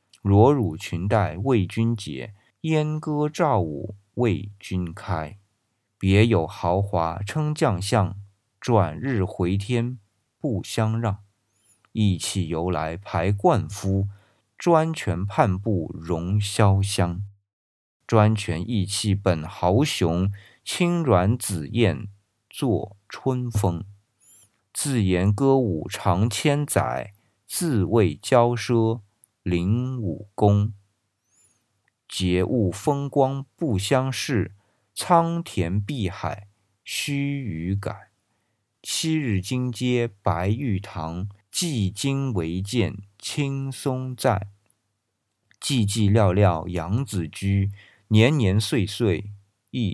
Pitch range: 100-120 Hz